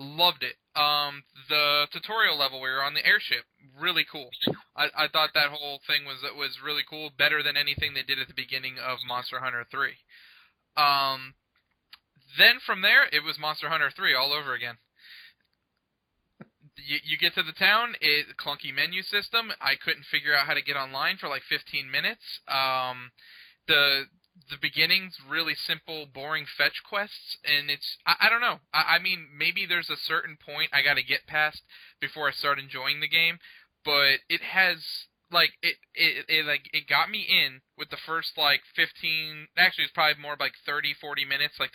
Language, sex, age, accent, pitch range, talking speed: English, male, 20-39, American, 135-160 Hz, 185 wpm